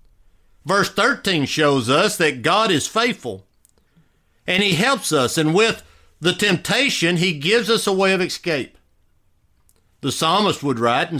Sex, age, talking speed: male, 50-69, 150 wpm